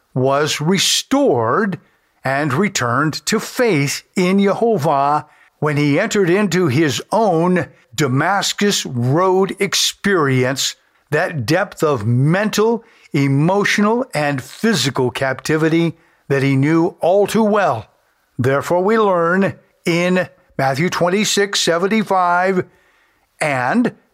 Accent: American